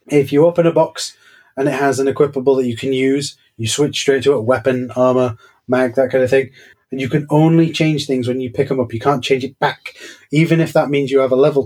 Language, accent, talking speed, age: English, British, 260 wpm, 20-39